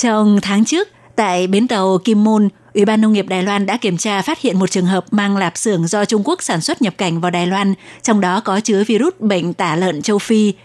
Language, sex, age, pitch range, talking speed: Vietnamese, female, 20-39, 190-220 Hz, 255 wpm